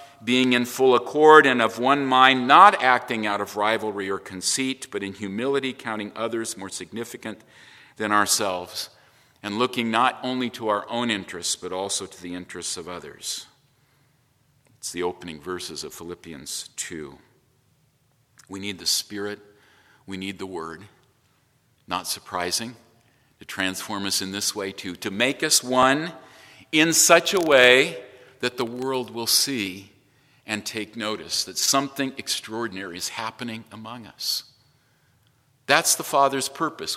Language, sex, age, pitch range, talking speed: English, male, 50-69, 110-145 Hz, 145 wpm